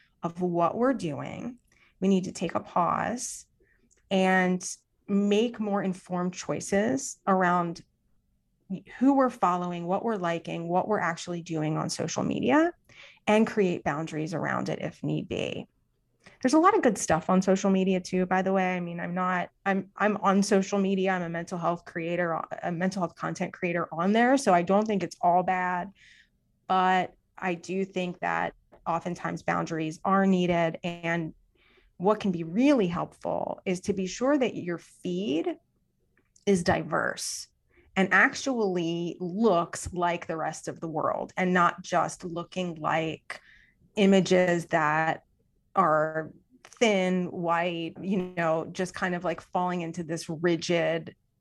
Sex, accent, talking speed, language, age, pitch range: female, American, 155 wpm, English, 30-49, 170-195 Hz